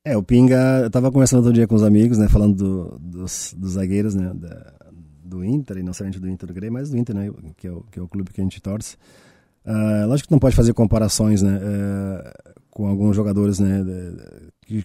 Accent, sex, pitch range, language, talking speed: Brazilian, male, 100-120 Hz, Portuguese, 235 wpm